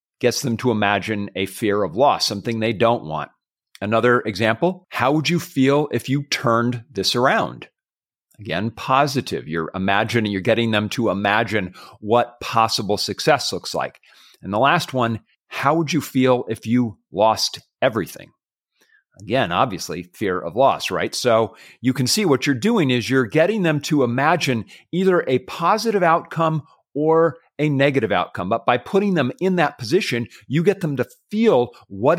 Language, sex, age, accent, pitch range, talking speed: English, male, 40-59, American, 115-155 Hz, 165 wpm